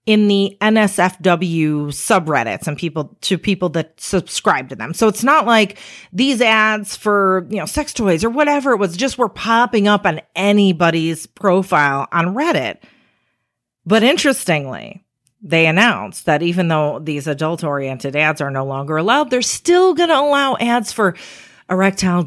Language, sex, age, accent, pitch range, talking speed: English, female, 40-59, American, 150-205 Hz, 160 wpm